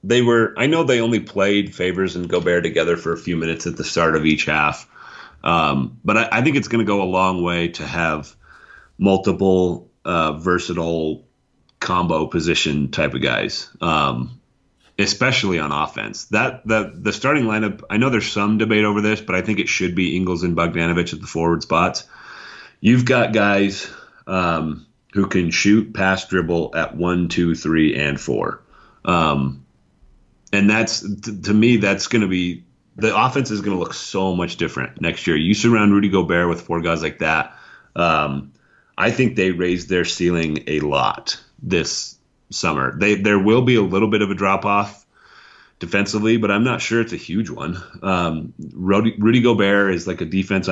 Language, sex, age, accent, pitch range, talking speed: English, male, 30-49, American, 85-100 Hz, 185 wpm